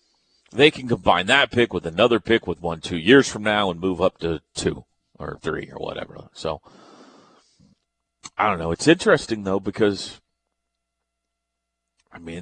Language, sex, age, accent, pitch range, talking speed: English, male, 40-59, American, 95-150 Hz, 160 wpm